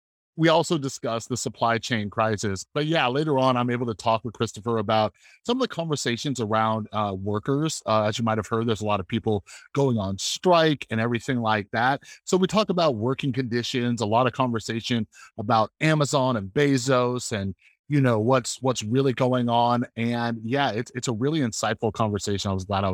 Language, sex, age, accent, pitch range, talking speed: English, male, 30-49, American, 110-140 Hz, 200 wpm